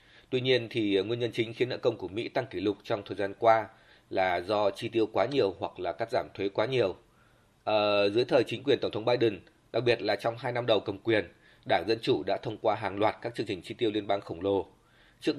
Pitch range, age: 110-130 Hz, 20-39